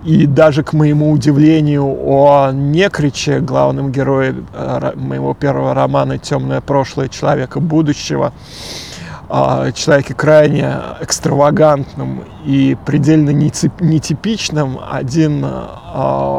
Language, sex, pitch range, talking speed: Russian, male, 130-160 Hz, 85 wpm